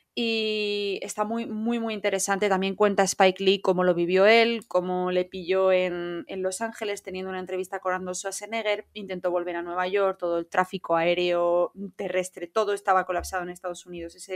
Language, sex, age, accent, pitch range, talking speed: Spanish, female, 20-39, Spanish, 180-210 Hz, 185 wpm